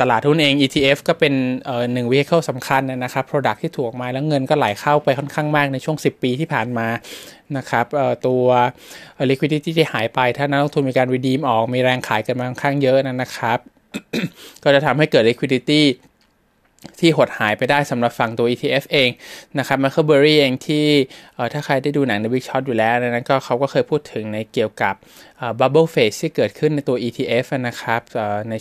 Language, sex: Thai, male